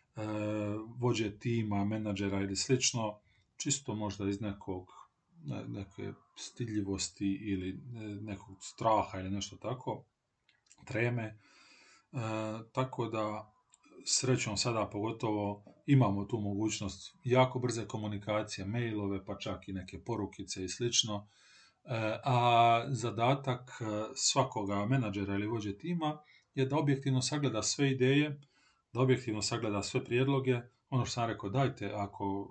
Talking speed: 115 wpm